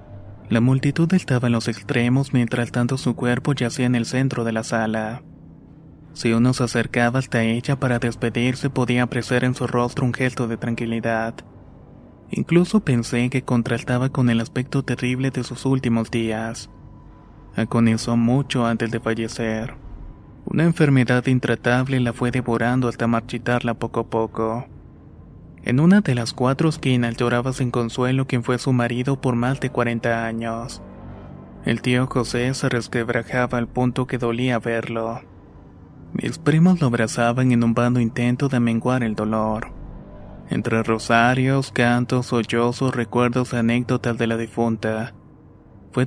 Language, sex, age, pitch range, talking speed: Spanish, male, 20-39, 115-125 Hz, 145 wpm